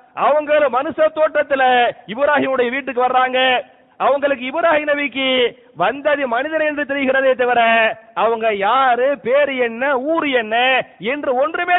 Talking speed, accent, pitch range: 105 wpm, Indian, 245-285 Hz